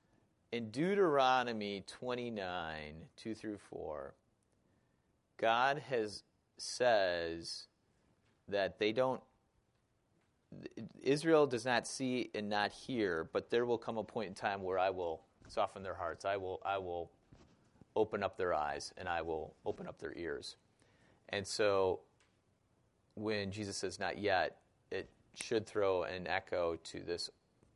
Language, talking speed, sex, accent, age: English, 135 wpm, male, American, 30-49